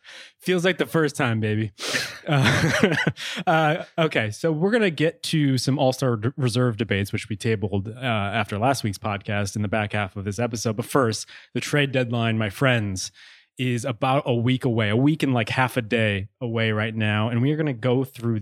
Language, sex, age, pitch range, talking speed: English, male, 20-39, 110-145 Hz, 205 wpm